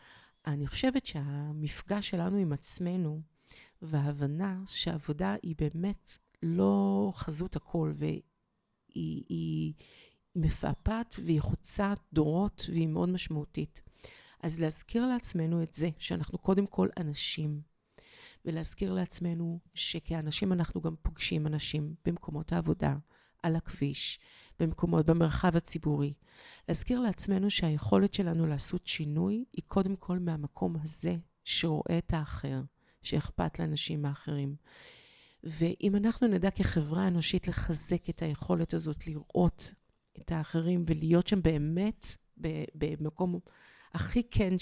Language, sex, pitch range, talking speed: Hebrew, female, 150-180 Hz, 105 wpm